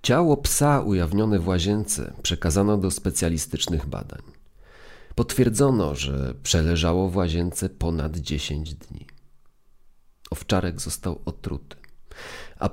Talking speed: 100 wpm